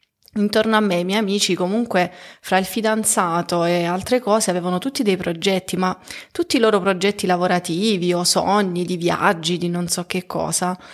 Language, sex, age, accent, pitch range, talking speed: Italian, female, 30-49, native, 180-225 Hz, 175 wpm